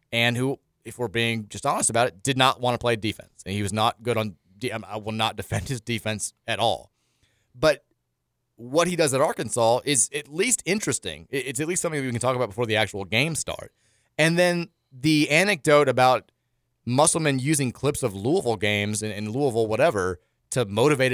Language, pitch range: English, 115-155 Hz